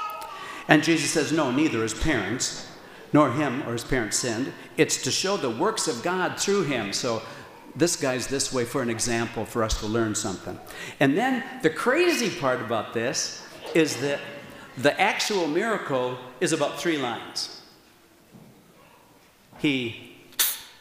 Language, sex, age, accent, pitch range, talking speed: English, male, 60-79, American, 115-165 Hz, 150 wpm